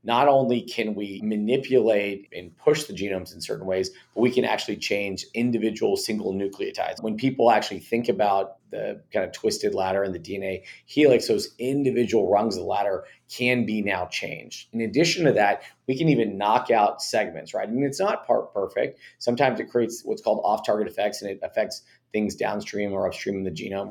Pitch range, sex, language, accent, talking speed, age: 95-120 Hz, male, English, American, 195 wpm, 30-49